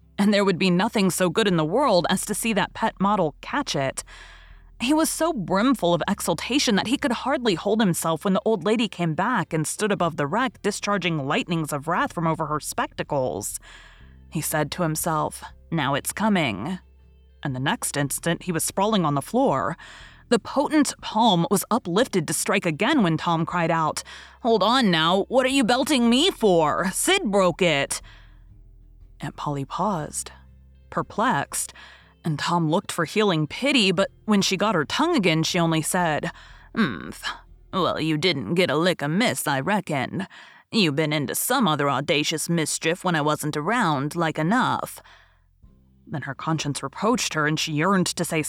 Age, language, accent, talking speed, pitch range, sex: 30-49, English, American, 175 wpm, 150-215 Hz, female